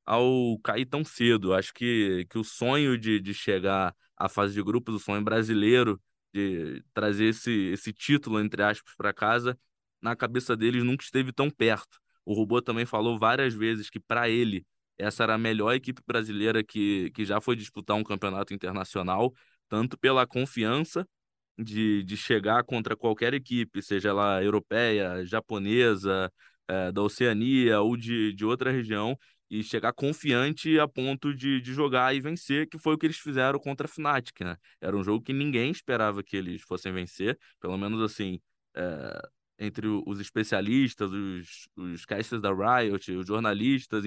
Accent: Brazilian